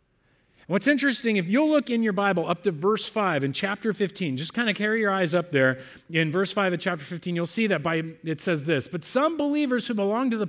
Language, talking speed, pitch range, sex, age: English, 245 wpm, 160-225 Hz, male, 40-59